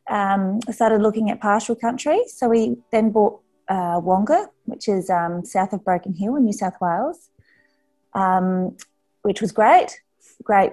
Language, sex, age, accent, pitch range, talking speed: English, female, 30-49, Australian, 180-235 Hz, 160 wpm